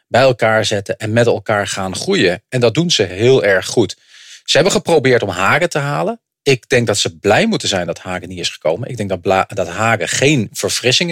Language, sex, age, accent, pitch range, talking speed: English, male, 40-59, Dutch, 100-130 Hz, 225 wpm